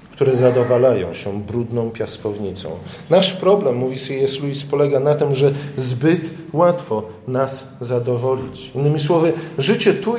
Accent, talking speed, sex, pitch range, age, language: native, 130 wpm, male, 125-160 Hz, 50-69, Polish